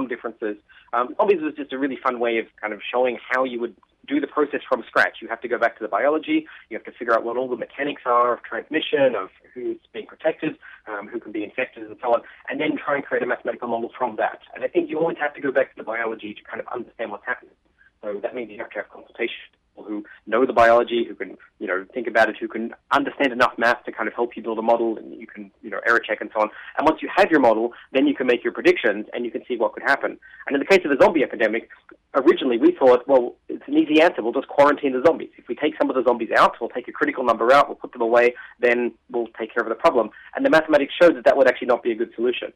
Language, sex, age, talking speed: English, male, 30-49, 285 wpm